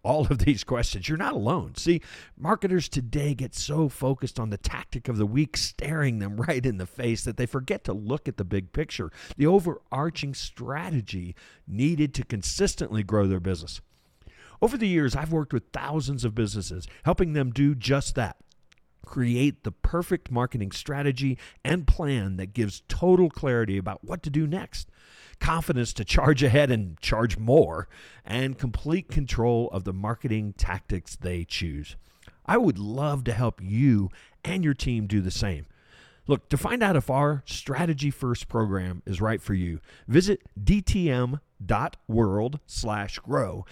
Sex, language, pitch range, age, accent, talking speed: male, English, 100-145 Hz, 50-69, American, 160 wpm